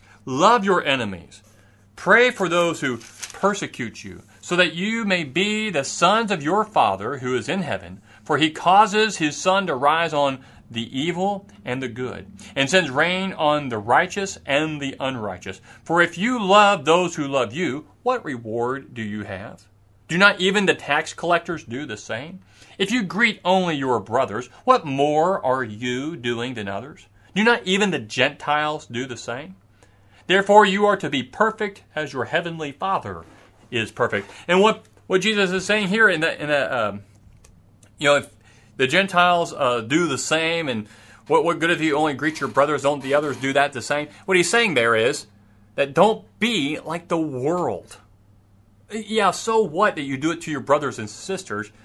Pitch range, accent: 110-185 Hz, American